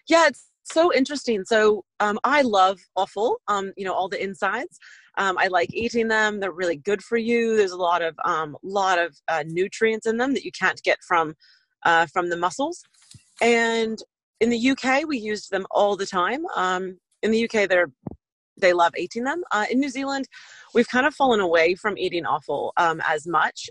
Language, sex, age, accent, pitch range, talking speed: English, female, 30-49, American, 170-220 Hz, 200 wpm